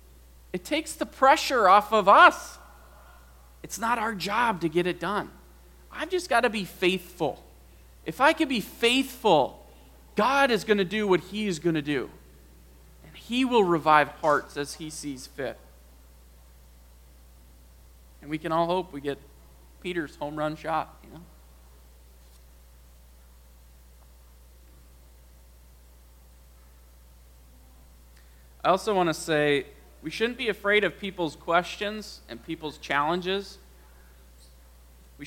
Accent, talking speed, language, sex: American, 130 wpm, English, male